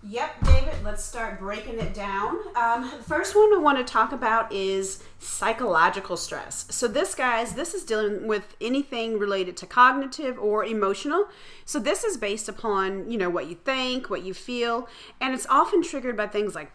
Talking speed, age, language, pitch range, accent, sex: 185 wpm, 40-59, English, 195-250 Hz, American, female